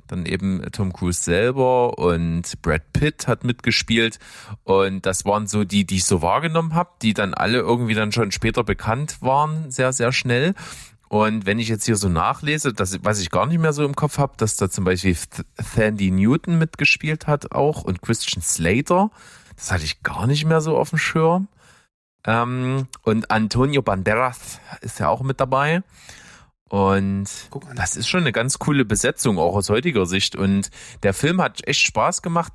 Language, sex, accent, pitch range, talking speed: German, male, German, 100-135 Hz, 180 wpm